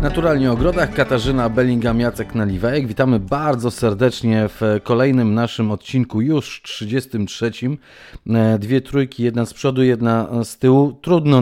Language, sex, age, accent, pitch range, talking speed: Polish, male, 30-49, native, 110-125 Hz, 130 wpm